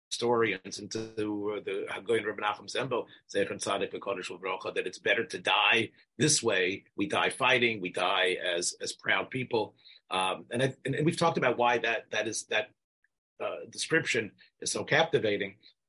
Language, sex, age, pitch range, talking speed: English, male, 40-59, 110-165 Hz, 150 wpm